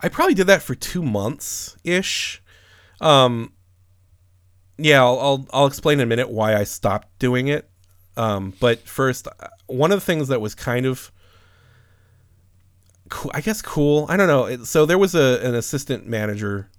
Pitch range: 95-120 Hz